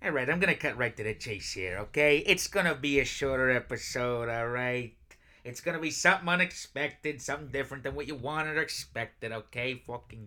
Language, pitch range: English, 125-170 Hz